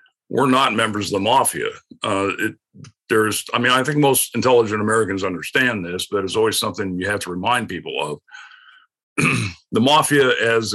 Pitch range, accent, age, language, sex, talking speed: 105-155 Hz, American, 50-69, English, male, 165 wpm